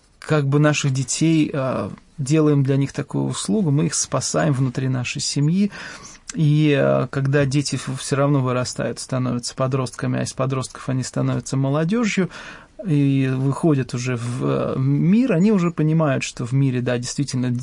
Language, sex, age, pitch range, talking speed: English, male, 20-39, 130-155 Hz, 145 wpm